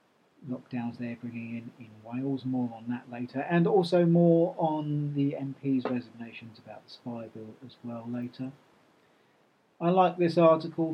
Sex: male